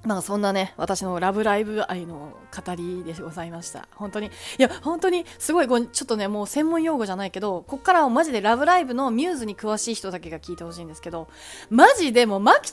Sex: female